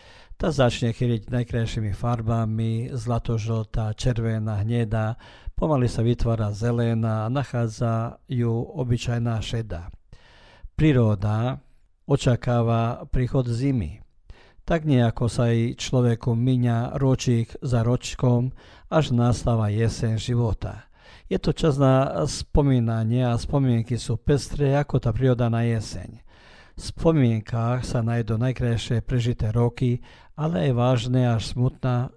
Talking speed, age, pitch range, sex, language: 110 wpm, 50-69, 115-125 Hz, male, Croatian